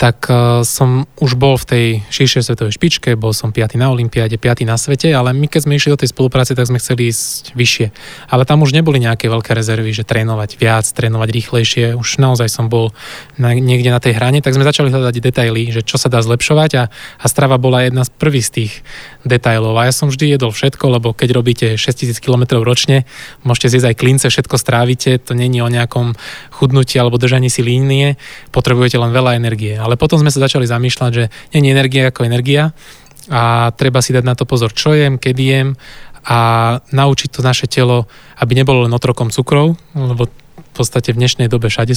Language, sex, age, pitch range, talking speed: Slovak, male, 20-39, 120-135 Hz, 205 wpm